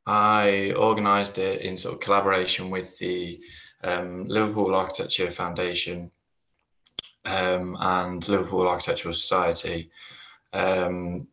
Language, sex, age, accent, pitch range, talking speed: English, male, 20-39, British, 85-100 Hz, 100 wpm